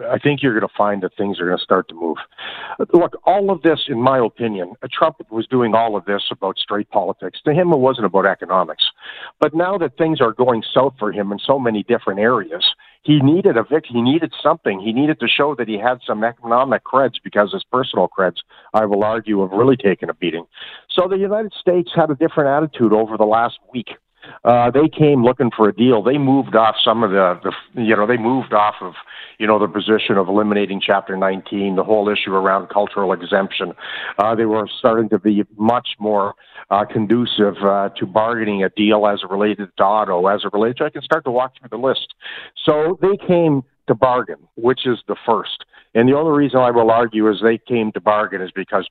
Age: 50-69